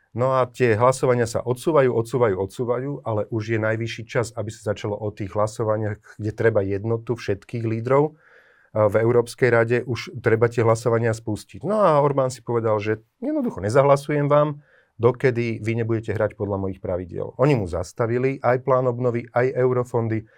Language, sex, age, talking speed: Slovak, male, 30-49, 165 wpm